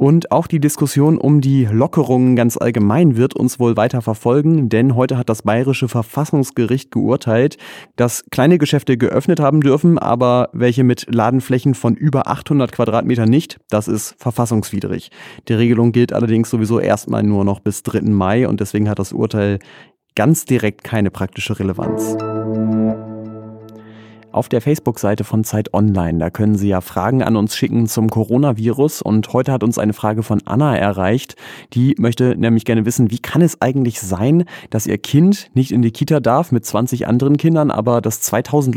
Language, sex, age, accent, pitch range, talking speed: German, male, 30-49, German, 110-130 Hz, 170 wpm